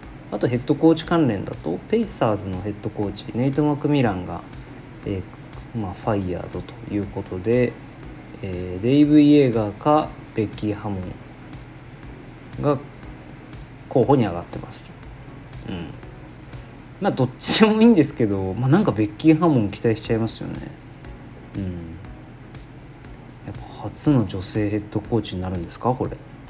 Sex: male